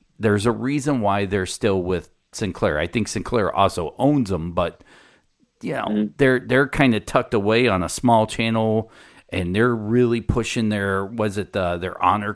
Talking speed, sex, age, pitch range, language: 185 wpm, male, 40-59, 95-115 Hz, English